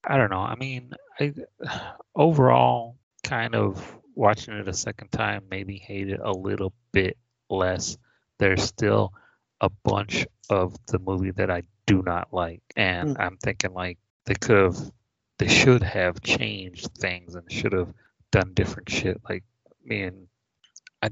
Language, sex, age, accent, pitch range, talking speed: English, male, 30-49, American, 95-110 Hz, 155 wpm